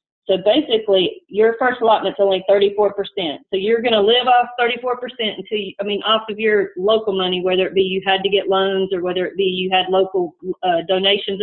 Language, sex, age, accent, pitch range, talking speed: English, female, 40-59, American, 195-240 Hz, 210 wpm